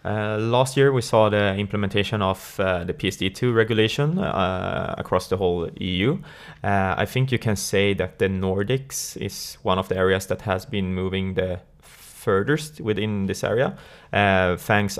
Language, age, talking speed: Swedish, 20-39, 170 wpm